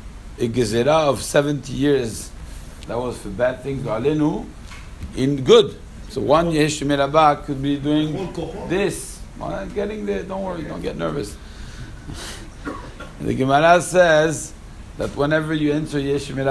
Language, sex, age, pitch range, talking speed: English, male, 60-79, 105-155 Hz, 135 wpm